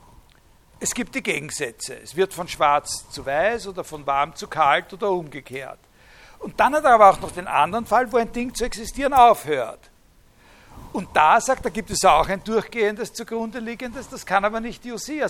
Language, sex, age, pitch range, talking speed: German, male, 60-79, 185-240 Hz, 195 wpm